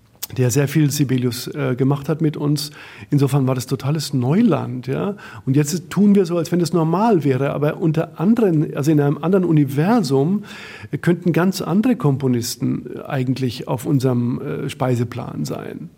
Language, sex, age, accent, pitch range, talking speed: German, male, 50-69, German, 135-170 Hz, 170 wpm